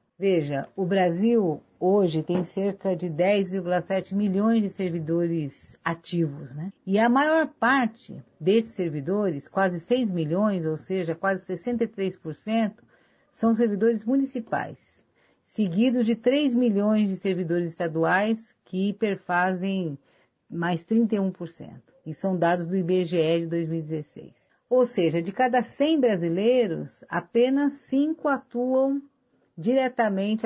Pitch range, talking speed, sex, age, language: 170-230 Hz, 110 wpm, female, 50-69, Portuguese